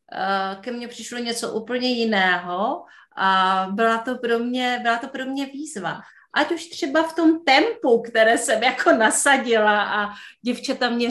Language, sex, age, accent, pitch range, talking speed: Czech, female, 30-49, native, 210-275 Hz, 160 wpm